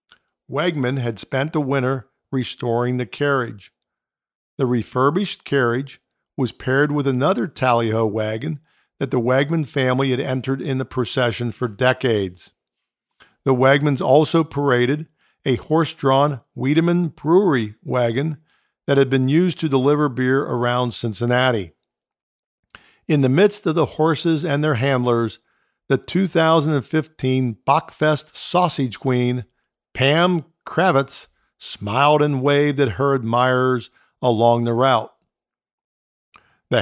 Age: 50-69